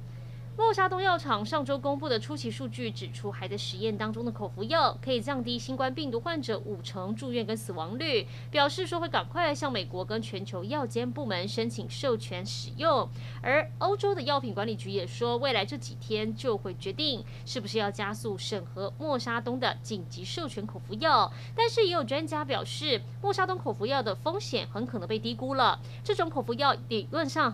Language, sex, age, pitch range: Chinese, female, 30-49, 115-135 Hz